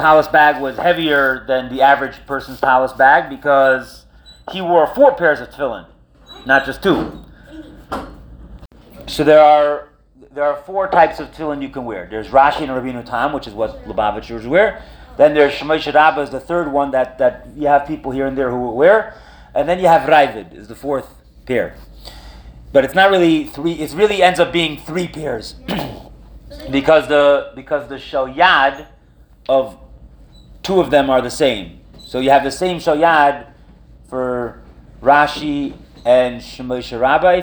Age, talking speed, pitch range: 30-49, 170 wpm, 130-170 Hz